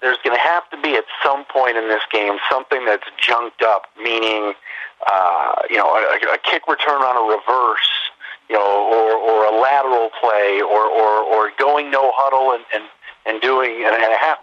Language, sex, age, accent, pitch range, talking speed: English, male, 40-59, American, 115-150 Hz, 200 wpm